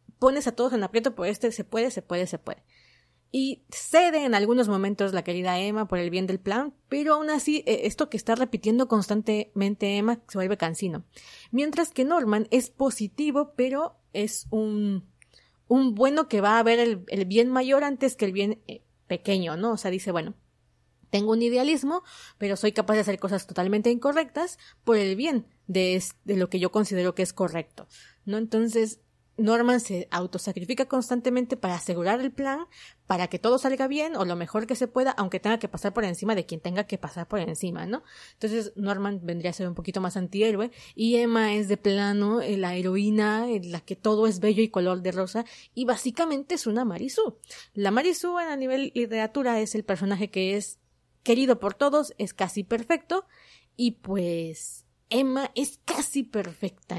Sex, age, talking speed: female, 30-49, 185 wpm